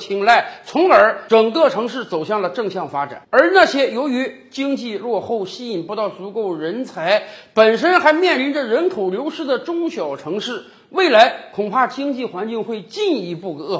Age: 50-69